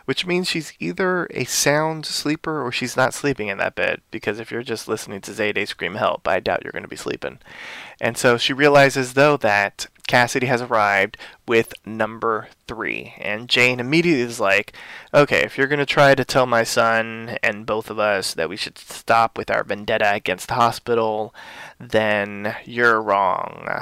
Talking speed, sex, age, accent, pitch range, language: 185 wpm, male, 20-39, American, 115-135 Hz, English